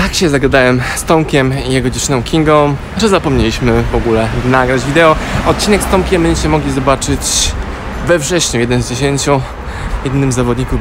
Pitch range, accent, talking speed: 120-145 Hz, native, 160 wpm